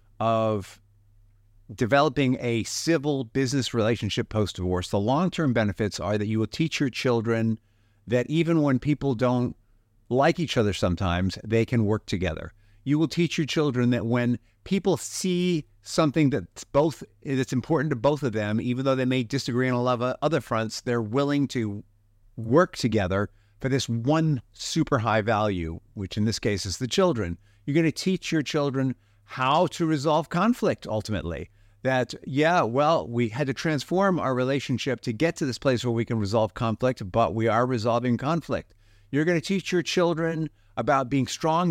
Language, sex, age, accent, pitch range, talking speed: English, male, 50-69, American, 110-150 Hz, 175 wpm